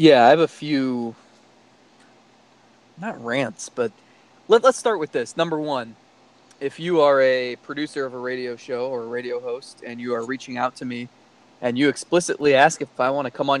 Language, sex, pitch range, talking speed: English, male, 125-160 Hz, 195 wpm